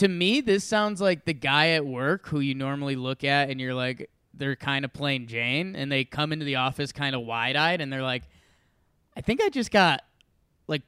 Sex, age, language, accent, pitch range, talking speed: male, 20-39, English, American, 145-200 Hz, 225 wpm